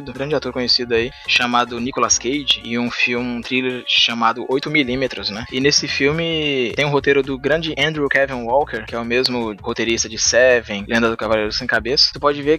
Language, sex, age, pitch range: Portuguese, male, 20-39, 120-150 Hz